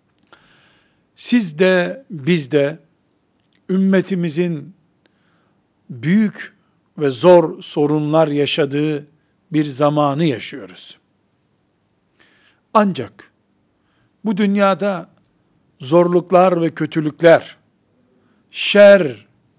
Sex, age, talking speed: male, 60-79, 60 wpm